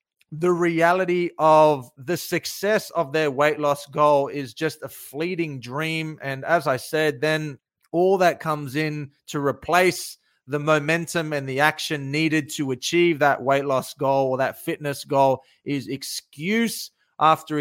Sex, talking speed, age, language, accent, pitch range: male, 155 wpm, 30-49, English, Australian, 135-165 Hz